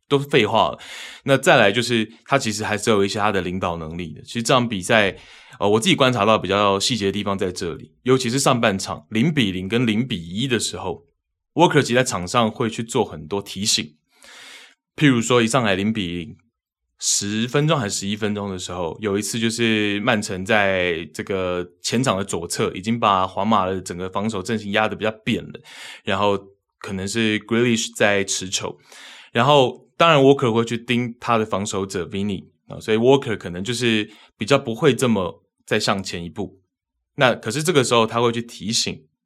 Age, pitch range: 20-39, 95-120 Hz